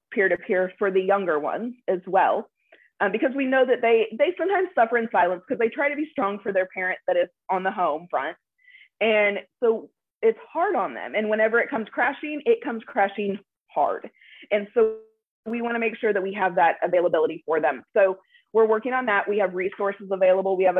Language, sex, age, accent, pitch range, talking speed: English, female, 20-39, American, 180-235 Hz, 210 wpm